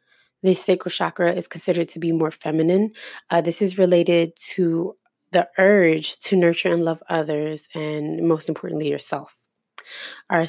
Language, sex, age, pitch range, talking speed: English, female, 20-39, 155-180 Hz, 150 wpm